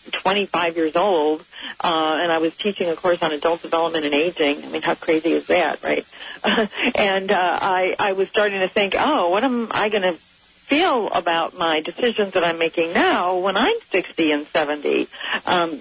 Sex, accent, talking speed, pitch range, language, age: female, American, 190 wpm, 160-195 Hz, English, 40-59